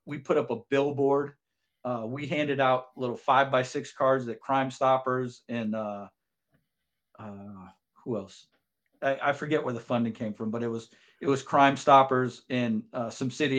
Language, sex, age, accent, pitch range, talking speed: English, male, 40-59, American, 125-150 Hz, 180 wpm